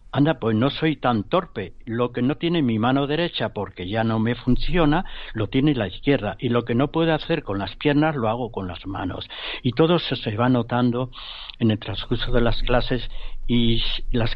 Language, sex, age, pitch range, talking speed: Spanish, male, 60-79, 115-150 Hz, 210 wpm